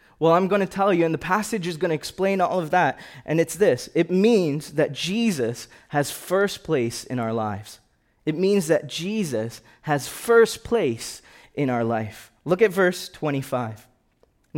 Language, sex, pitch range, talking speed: English, male, 145-215 Hz, 175 wpm